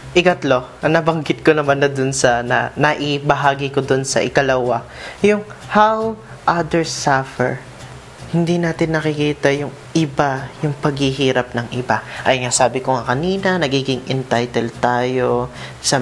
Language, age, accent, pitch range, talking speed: Filipino, 20-39, native, 130-165 Hz, 140 wpm